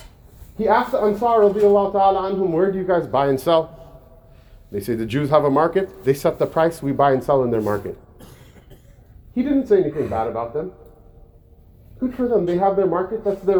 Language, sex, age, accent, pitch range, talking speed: English, male, 30-49, American, 145-215 Hz, 200 wpm